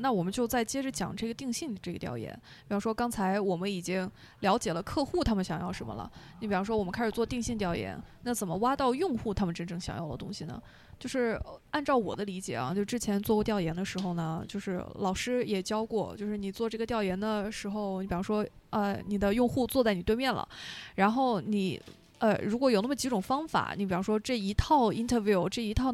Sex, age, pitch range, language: female, 20-39, 190-235 Hz, Chinese